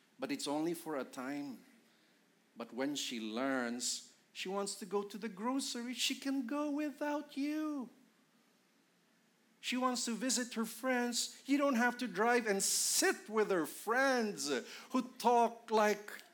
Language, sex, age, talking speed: English, male, 50-69, 150 wpm